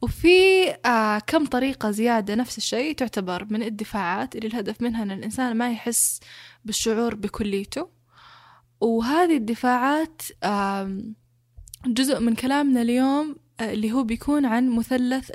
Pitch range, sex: 210-260 Hz, female